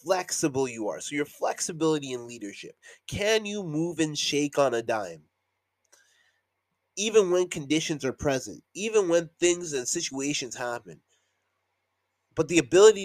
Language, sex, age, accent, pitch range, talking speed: English, male, 30-49, American, 130-195 Hz, 140 wpm